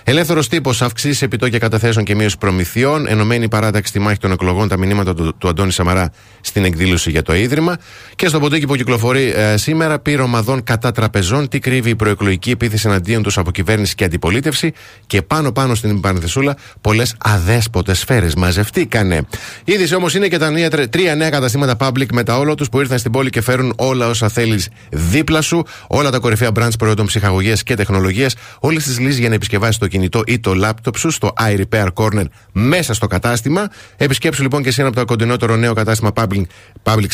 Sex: male